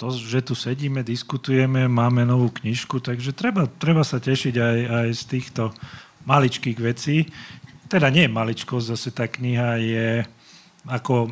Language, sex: Slovak, male